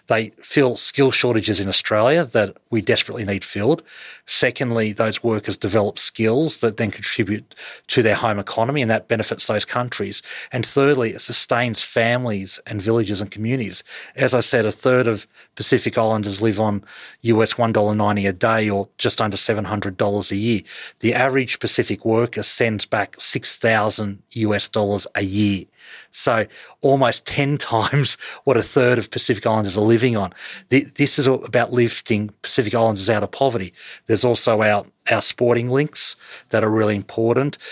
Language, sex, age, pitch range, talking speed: English, male, 30-49, 105-120 Hz, 160 wpm